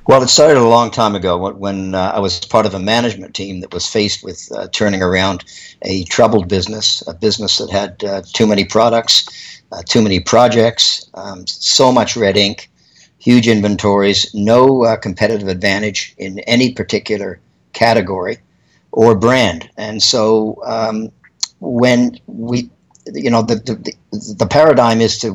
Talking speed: 160 wpm